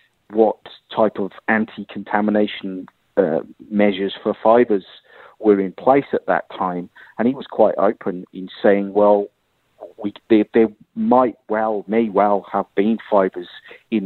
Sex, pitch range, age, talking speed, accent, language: male, 95-110 Hz, 40-59, 140 wpm, British, English